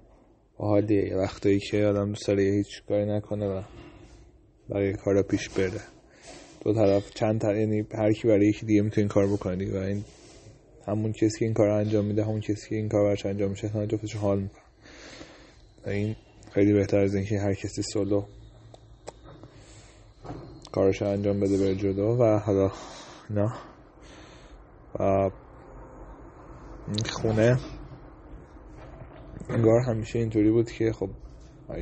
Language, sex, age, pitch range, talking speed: Persian, male, 20-39, 100-110 Hz, 135 wpm